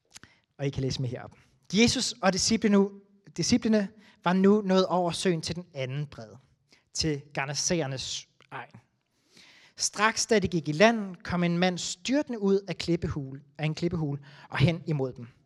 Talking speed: 150 wpm